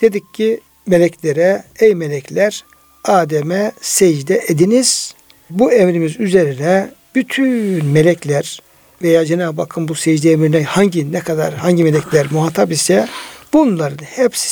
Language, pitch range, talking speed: Turkish, 165-215 Hz, 115 wpm